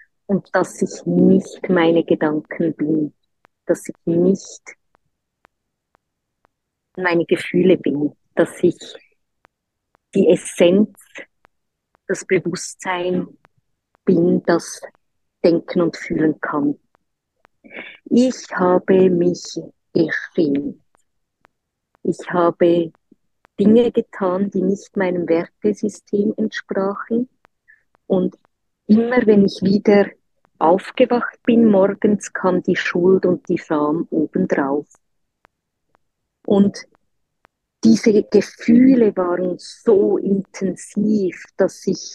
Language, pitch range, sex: German, 175-210 Hz, female